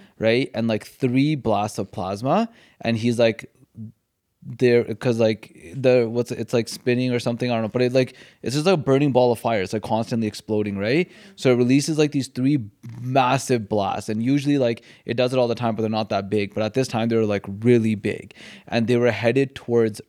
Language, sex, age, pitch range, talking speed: English, male, 20-39, 110-130 Hz, 225 wpm